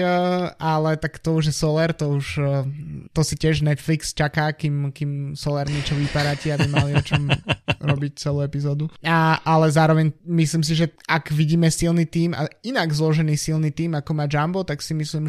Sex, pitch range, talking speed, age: male, 140-150 Hz, 175 wpm, 20-39